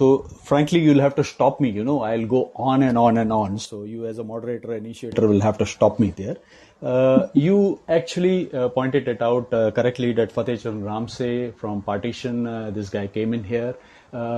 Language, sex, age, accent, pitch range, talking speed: Hindi, male, 30-49, native, 110-130 Hz, 210 wpm